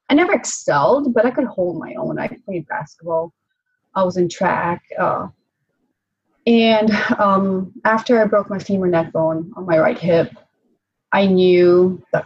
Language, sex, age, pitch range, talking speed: English, female, 30-49, 175-225 Hz, 160 wpm